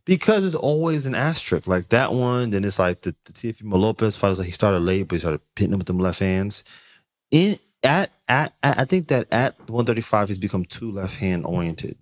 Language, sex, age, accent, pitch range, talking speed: English, male, 20-39, American, 85-120 Hz, 220 wpm